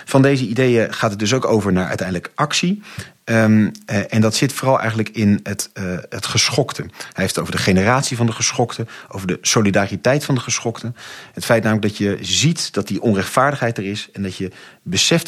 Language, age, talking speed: Dutch, 40-59, 205 wpm